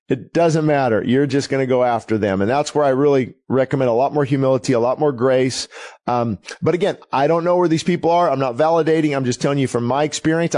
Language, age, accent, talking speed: English, 40-59, American, 250 wpm